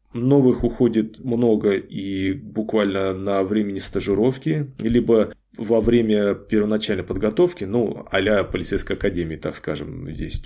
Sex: male